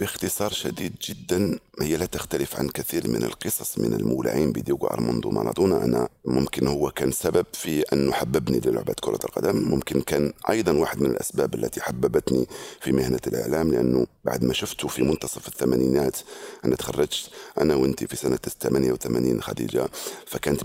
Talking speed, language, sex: 155 wpm, Arabic, male